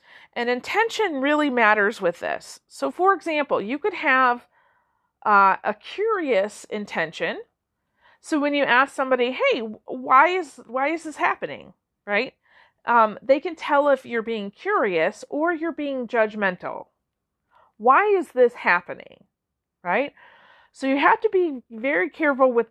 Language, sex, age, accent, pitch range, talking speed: English, female, 40-59, American, 215-320 Hz, 145 wpm